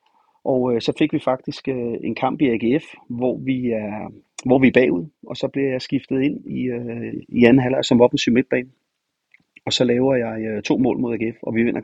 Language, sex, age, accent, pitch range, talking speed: Danish, male, 30-49, native, 110-130 Hz, 220 wpm